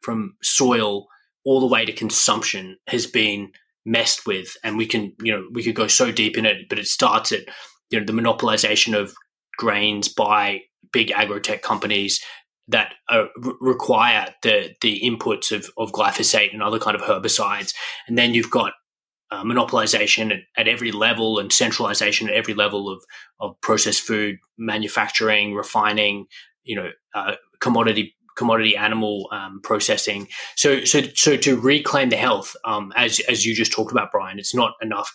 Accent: Australian